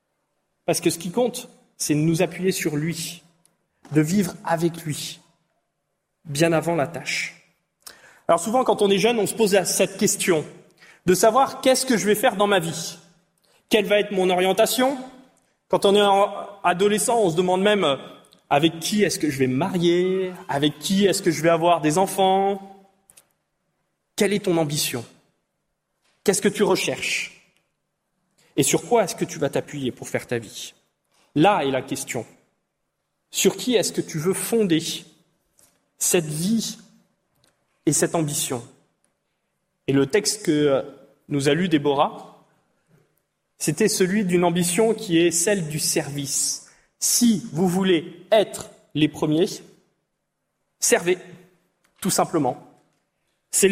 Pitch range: 160-205 Hz